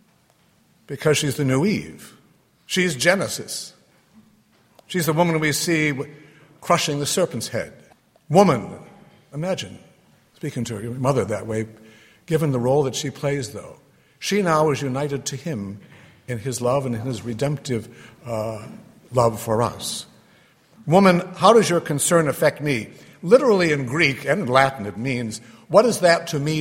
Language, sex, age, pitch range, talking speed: English, male, 60-79, 125-160 Hz, 155 wpm